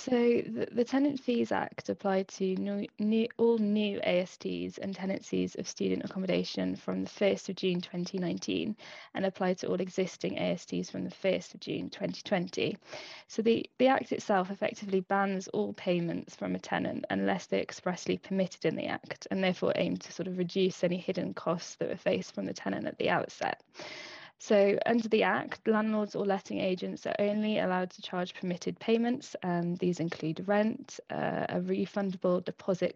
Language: English